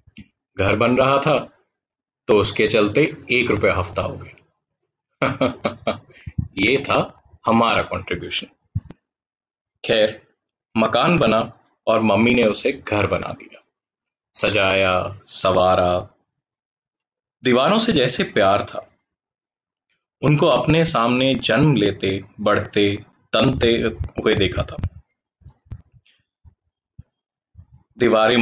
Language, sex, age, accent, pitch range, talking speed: Hindi, male, 30-49, native, 105-145 Hz, 95 wpm